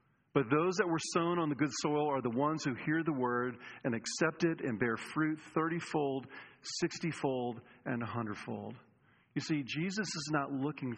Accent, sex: American, male